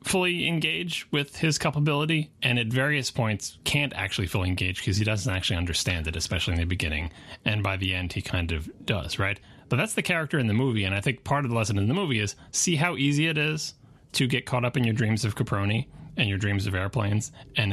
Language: English